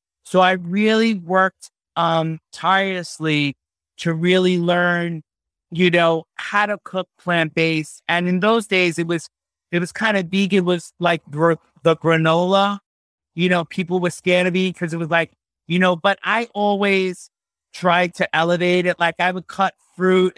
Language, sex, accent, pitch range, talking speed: English, male, American, 165-180 Hz, 165 wpm